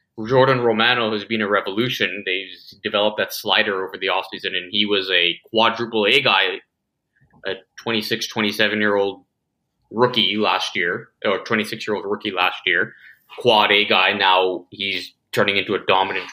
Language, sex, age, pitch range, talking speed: English, male, 20-39, 105-120 Hz, 145 wpm